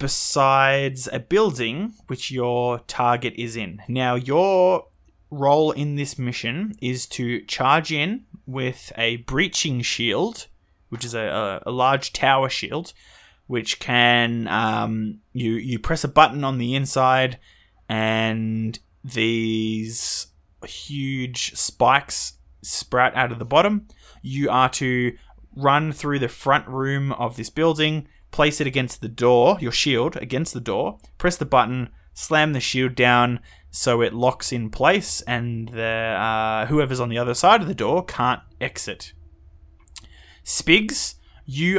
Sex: male